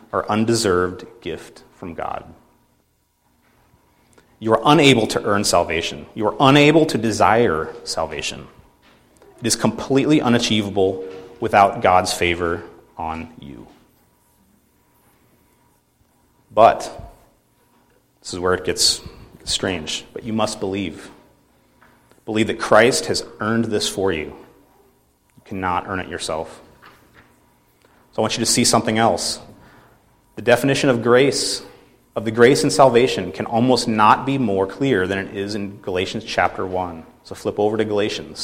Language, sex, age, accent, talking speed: English, male, 30-49, American, 135 wpm